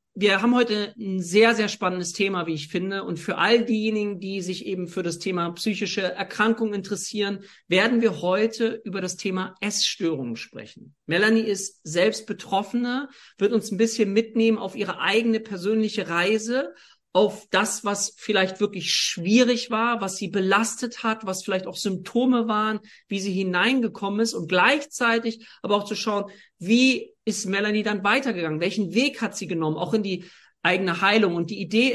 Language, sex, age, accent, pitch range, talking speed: German, male, 40-59, German, 195-230 Hz, 170 wpm